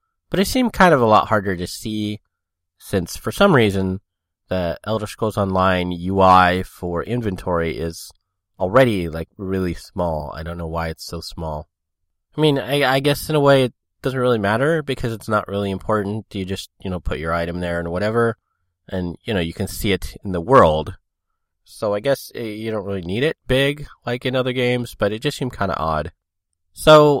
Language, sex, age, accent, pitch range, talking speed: English, male, 20-39, American, 90-115 Hz, 200 wpm